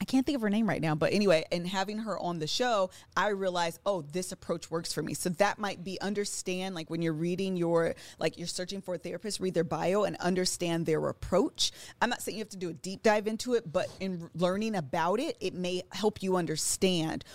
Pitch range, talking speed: 160-200 Hz, 240 wpm